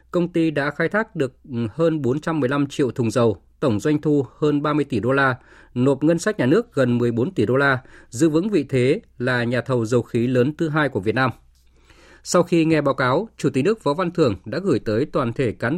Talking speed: 230 wpm